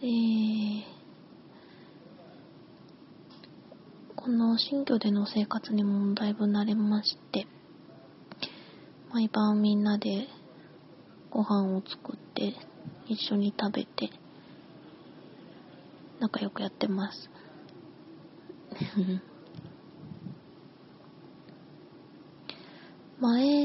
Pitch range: 210-250 Hz